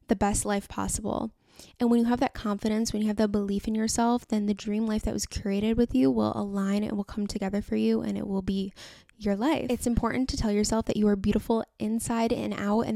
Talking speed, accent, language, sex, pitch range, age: 245 wpm, American, English, female, 205-235 Hz, 10-29